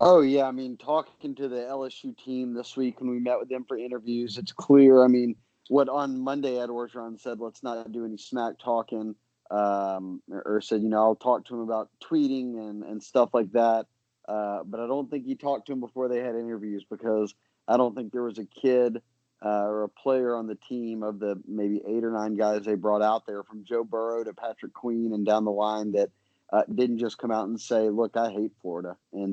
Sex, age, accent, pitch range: male, 30-49, American, 110-125 Hz